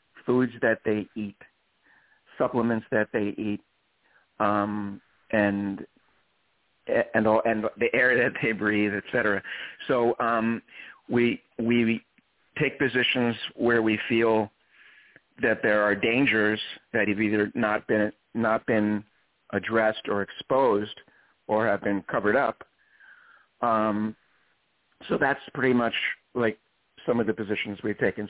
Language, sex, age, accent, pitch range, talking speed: English, male, 50-69, American, 105-115 Hz, 125 wpm